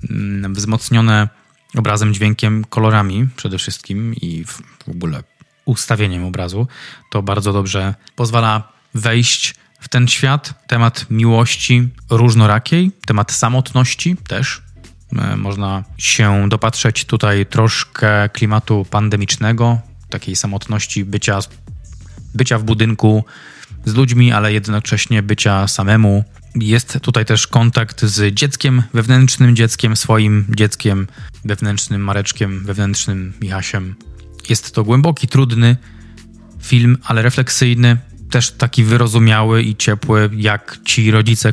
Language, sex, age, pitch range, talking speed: Polish, male, 20-39, 105-125 Hz, 105 wpm